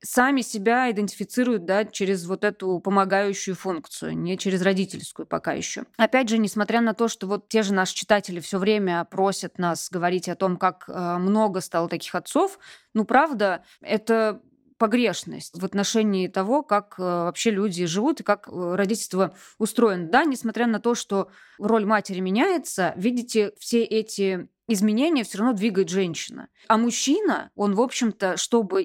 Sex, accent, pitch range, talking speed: female, native, 195-245 Hz, 155 wpm